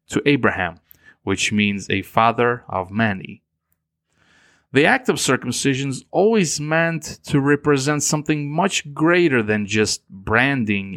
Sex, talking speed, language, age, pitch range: male, 125 wpm, English, 30-49, 100-145 Hz